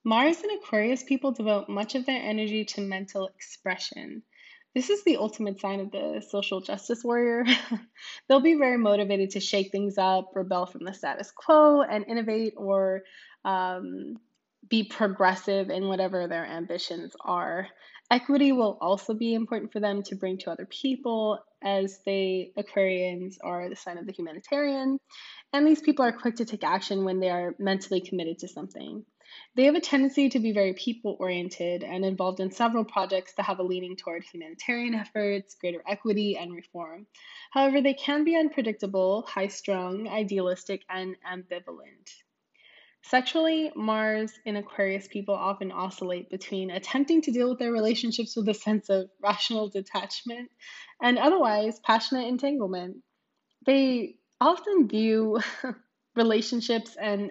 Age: 20-39